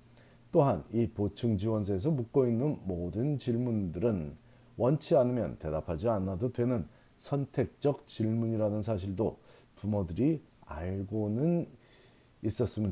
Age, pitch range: 40-59, 100-135 Hz